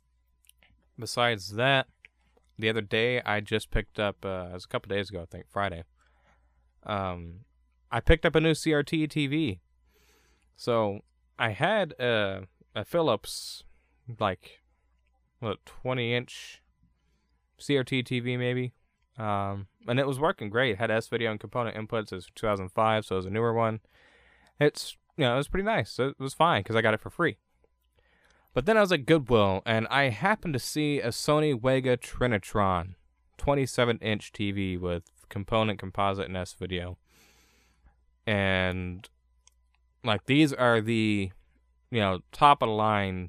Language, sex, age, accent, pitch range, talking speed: English, male, 20-39, American, 90-120 Hz, 145 wpm